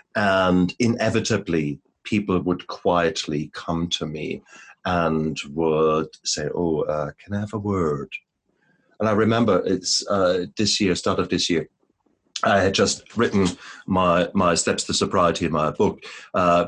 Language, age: English, 50-69